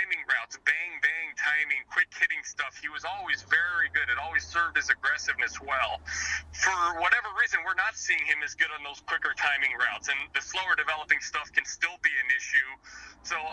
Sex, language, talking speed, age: male, English, 195 wpm, 30-49